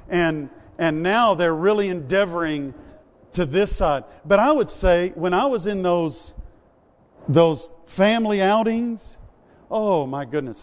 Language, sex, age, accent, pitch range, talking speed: English, male, 50-69, American, 165-210 Hz, 135 wpm